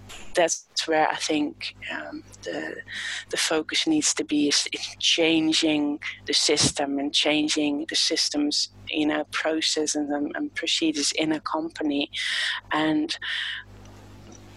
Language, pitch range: English, 145-175 Hz